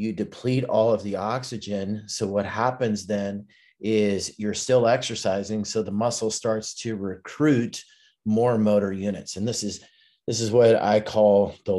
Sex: male